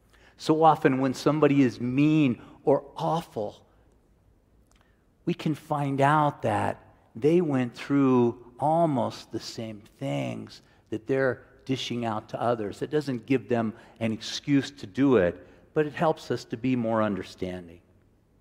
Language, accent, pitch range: English, American, 115-150 Hz